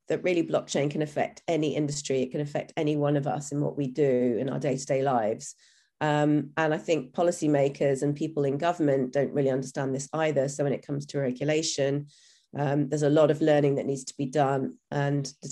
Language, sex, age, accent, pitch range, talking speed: English, female, 30-49, British, 140-155 Hz, 210 wpm